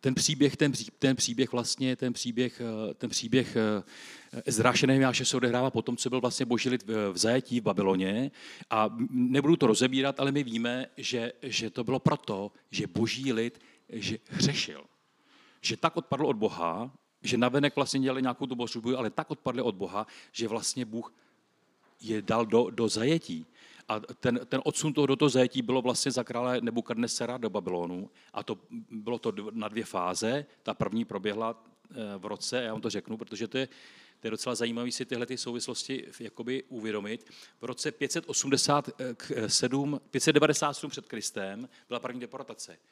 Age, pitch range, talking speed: 40-59, 115-135 Hz, 165 wpm